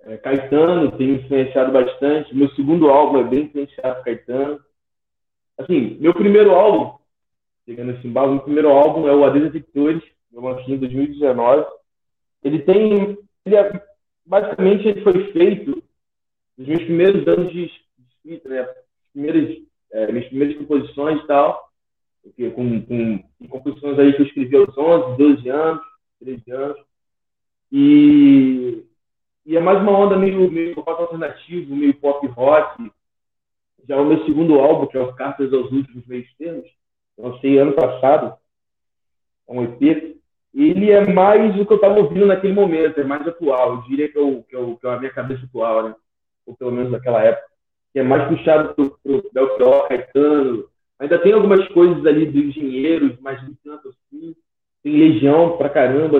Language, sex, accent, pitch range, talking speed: Portuguese, male, Brazilian, 135-190 Hz, 155 wpm